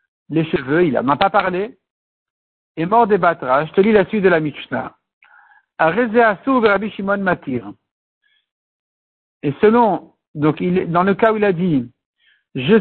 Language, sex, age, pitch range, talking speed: French, male, 60-79, 175-225 Hz, 170 wpm